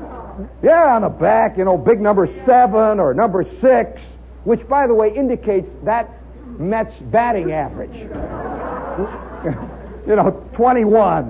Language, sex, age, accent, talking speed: English, male, 60-79, American, 125 wpm